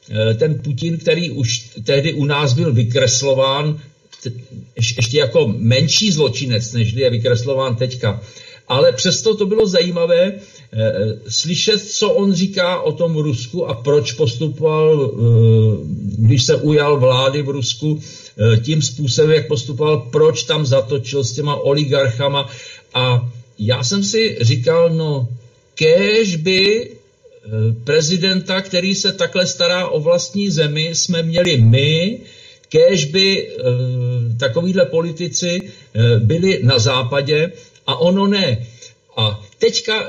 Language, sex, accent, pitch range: Czech, male, native, 125-175 Hz